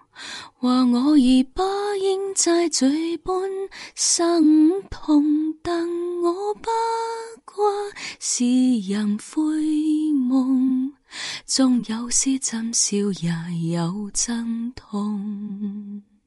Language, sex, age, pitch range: Chinese, female, 20-39, 210-305 Hz